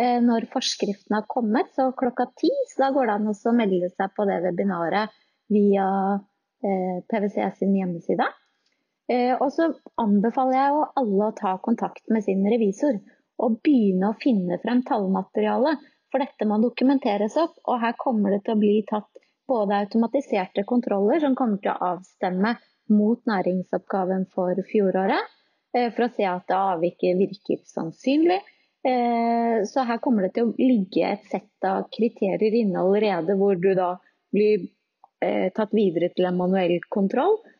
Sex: female